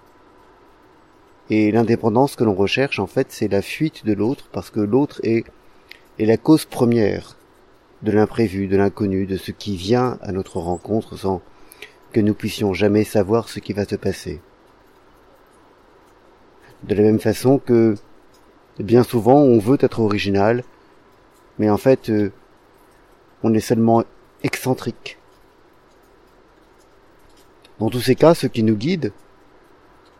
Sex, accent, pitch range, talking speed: male, French, 105-135 Hz, 135 wpm